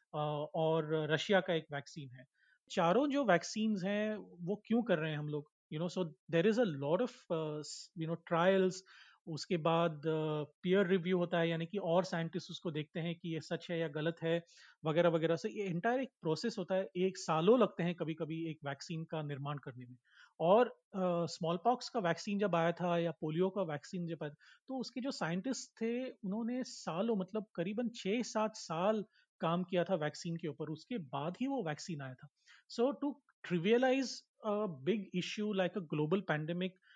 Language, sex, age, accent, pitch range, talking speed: Hindi, male, 30-49, native, 160-210 Hz, 185 wpm